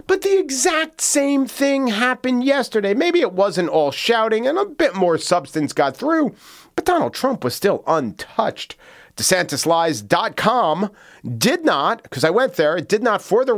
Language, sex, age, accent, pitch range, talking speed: English, male, 40-59, American, 135-220 Hz, 165 wpm